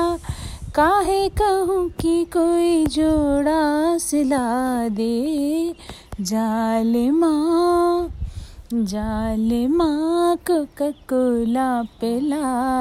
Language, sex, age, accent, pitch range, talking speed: Hindi, female, 30-49, native, 220-305 Hz, 50 wpm